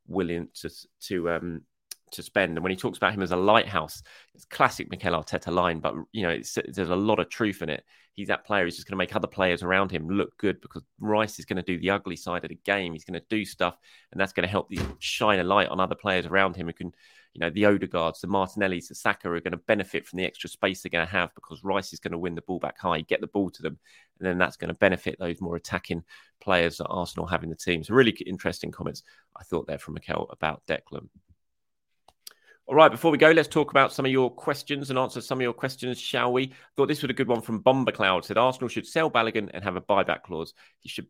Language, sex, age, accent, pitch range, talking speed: English, male, 30-49, British, 90-115 Hz, 270 wpm